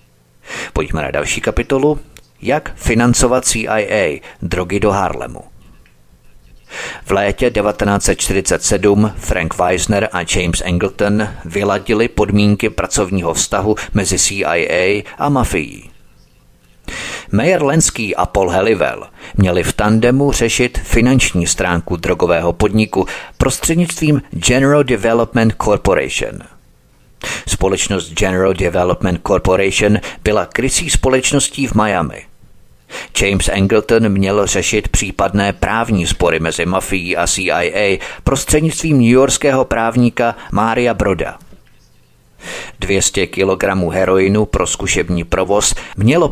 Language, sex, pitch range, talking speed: Czech, male, 95-115 Hz, 100 wpm